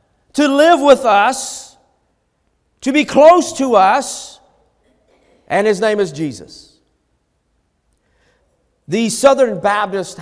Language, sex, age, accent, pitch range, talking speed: English, male, 50-69, American, 160-230 Hz, 100 wpm